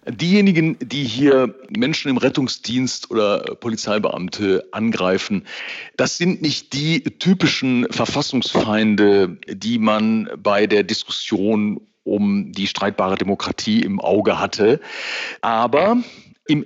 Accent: German